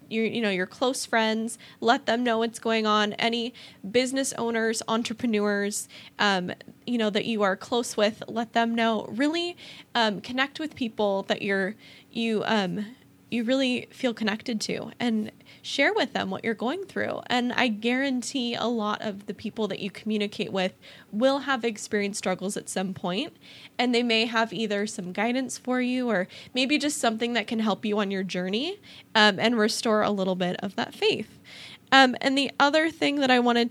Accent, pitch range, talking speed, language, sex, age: American, 210-245 Hz, 185 wpm, English, female, 10-29